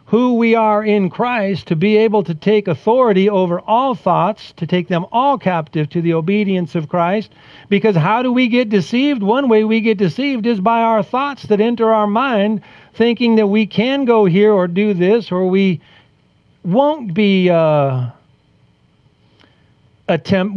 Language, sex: English, male